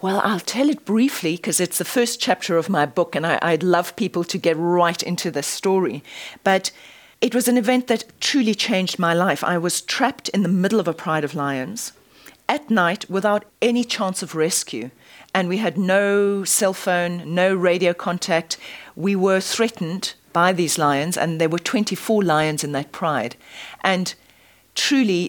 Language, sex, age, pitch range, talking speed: English, female, 40-59, 160-200 Hz, 180 wpm